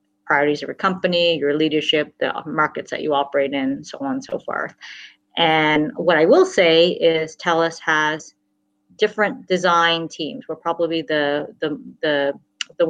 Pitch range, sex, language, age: 150-185 Hz, female, English, 30-49